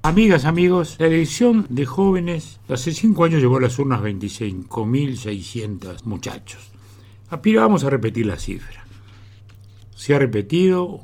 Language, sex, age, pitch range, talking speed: Spanish, male, 60-79, 110-150 Hz, 125 wpm